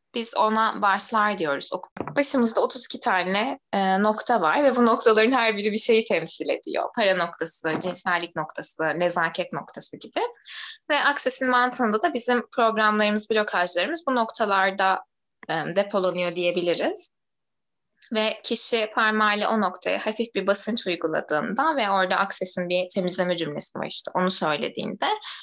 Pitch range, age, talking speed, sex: 185-245 Hz, 10-29, 135 wpm, female